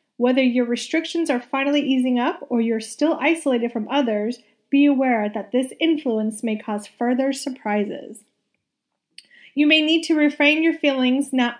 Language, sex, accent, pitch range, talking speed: English, female, American, 230-285 Hz, 155 wpm